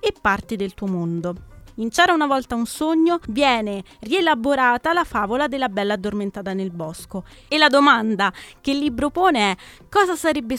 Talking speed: 170 wpm